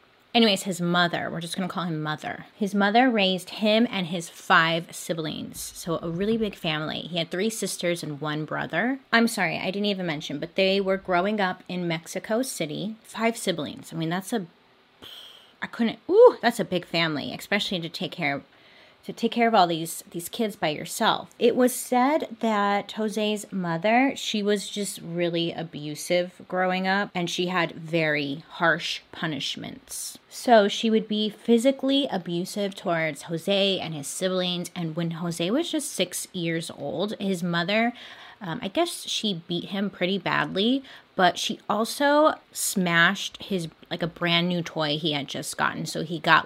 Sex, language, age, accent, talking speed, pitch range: female, English, 30-49, American, 175 wpm, 170-220 Hz